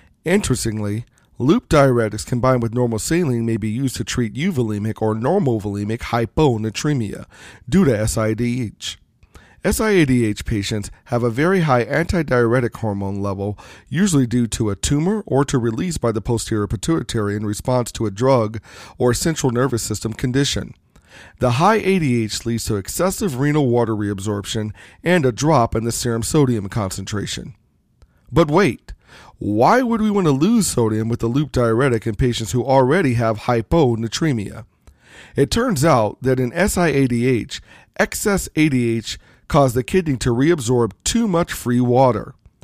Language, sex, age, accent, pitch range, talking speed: English, male, 40-59, American, 110-145 Hz, 145 wpm